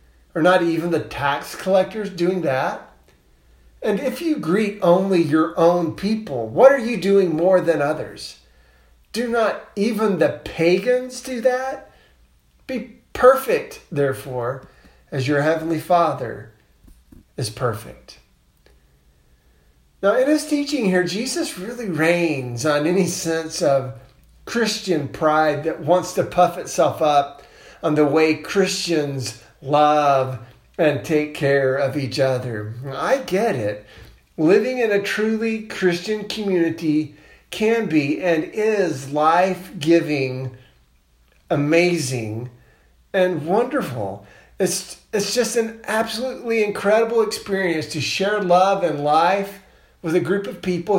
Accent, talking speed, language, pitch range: American, 120 wpm, English, 135-195 Hz